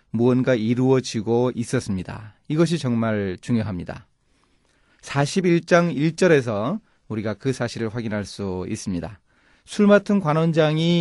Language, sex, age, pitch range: Korean, male, 30-49, 110-165 Hz